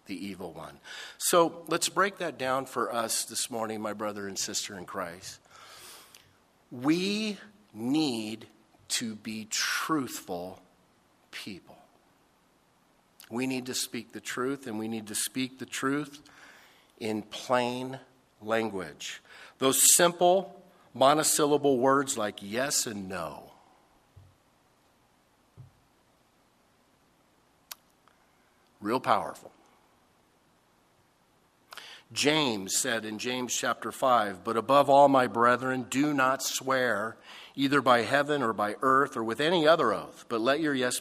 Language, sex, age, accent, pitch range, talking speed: English, male, 50-69, American, 110-145 Hz, 115 wpm